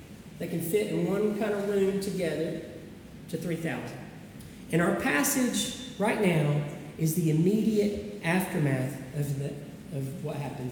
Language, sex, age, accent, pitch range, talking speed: English, male, 40-59, American, 165-235 Hz, 135 wpm